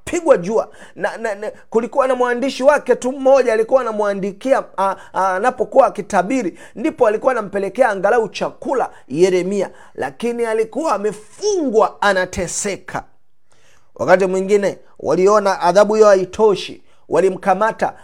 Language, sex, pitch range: Swahili, male, 205-275 Hz